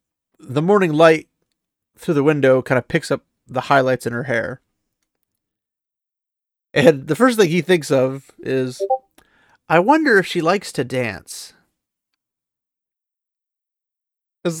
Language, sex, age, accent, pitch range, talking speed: English, male, 30-49, American, 130-165 Hz, 125 wpm